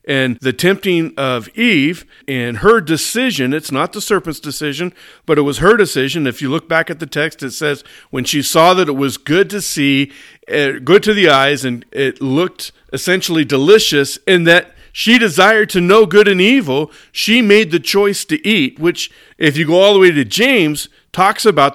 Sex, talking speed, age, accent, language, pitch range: male, 195 wpm, 50-69, American, English, 135-185 Hz